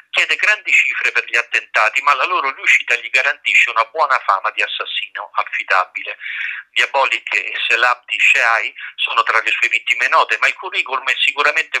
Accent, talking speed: native, 170 wpm